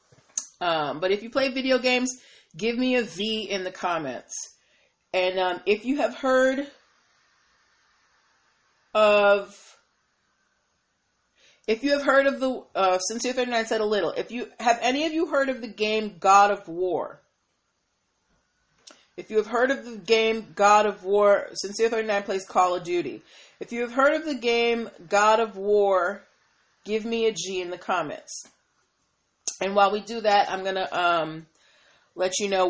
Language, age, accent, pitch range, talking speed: English, 40-59, American, 190-245 Hz, 165 wpm